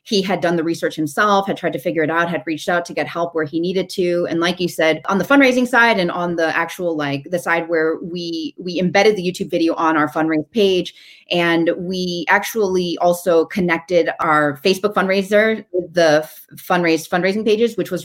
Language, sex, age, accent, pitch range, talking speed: English, female, 30-49, American, 160-190 Hz, 210 wpm